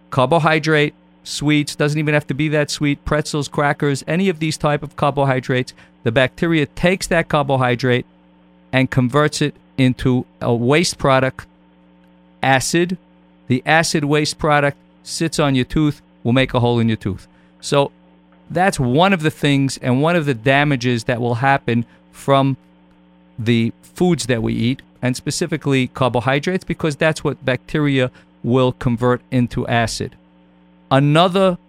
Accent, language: American, English